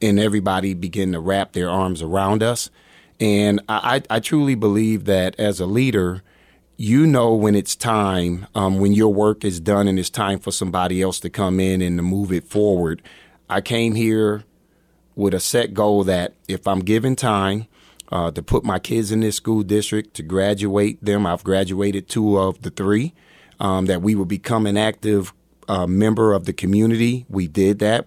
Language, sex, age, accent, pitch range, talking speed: English, male, 30-49, American, 95-110 Hz, 190 wpm